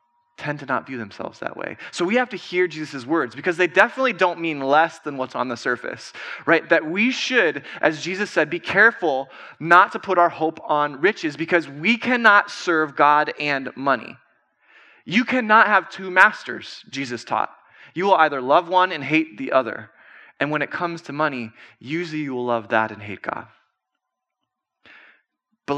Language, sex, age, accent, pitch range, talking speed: English, male, 20-39, American, 140-200 Hz, 185 wpm